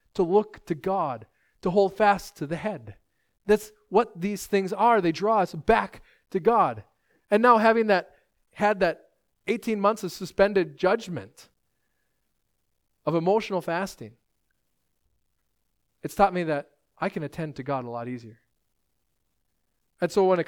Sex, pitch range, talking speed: male, 140-210 Hz, 150 wpm